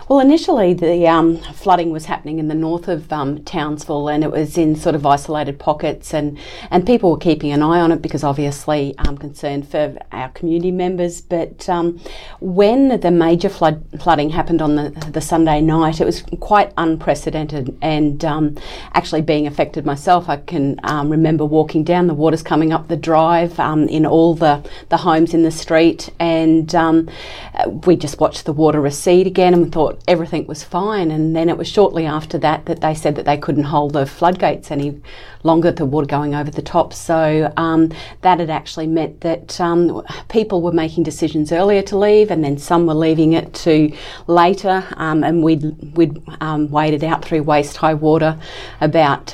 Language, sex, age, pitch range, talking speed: English, female, 40-59, 150-170 Hz, 190 wpm